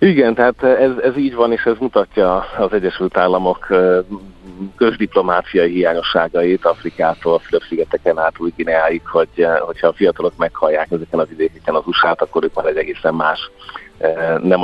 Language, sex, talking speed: Hungarian, male, 135 wpm